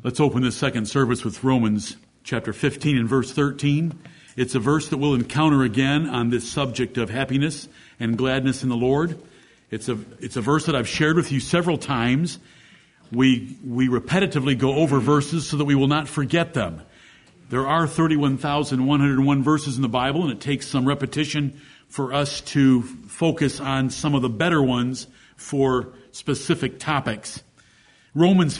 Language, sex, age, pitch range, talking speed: English, male, 50-69, 130-170 Hz, 170 wpm